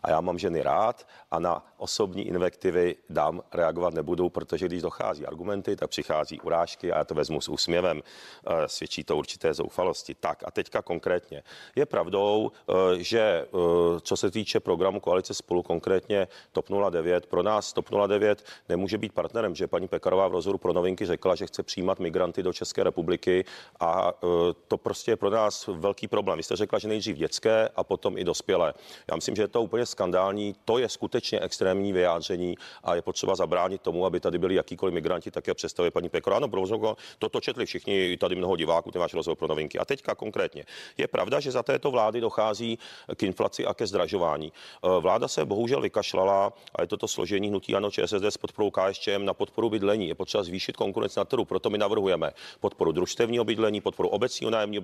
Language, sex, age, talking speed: Czech, male, 40-59, 185 wpm